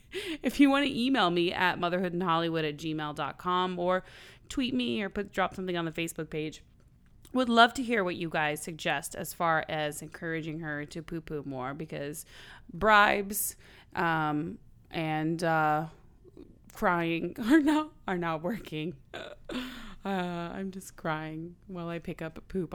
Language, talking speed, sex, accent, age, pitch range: English, 155 wpm, female, American, 20-39, 155-200 Hz